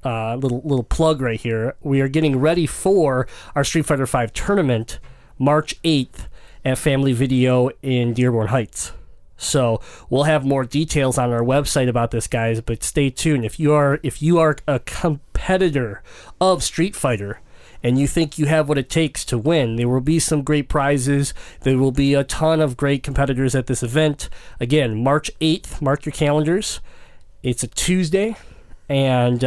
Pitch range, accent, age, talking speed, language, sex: 125-150 Hz, American, 30-49, 175 wpm, English, male